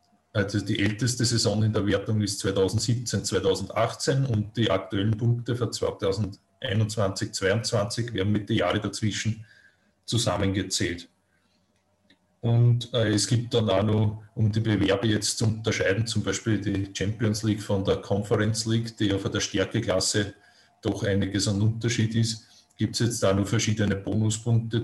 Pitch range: 100-115 Hz